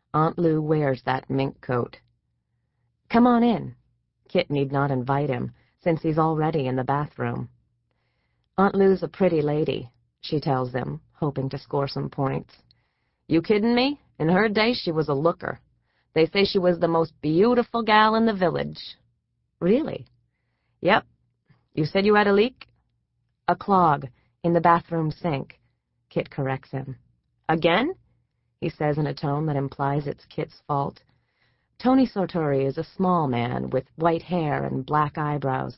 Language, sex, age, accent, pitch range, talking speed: English, female, 40-59, American, 130-180 Hz, 160 wpm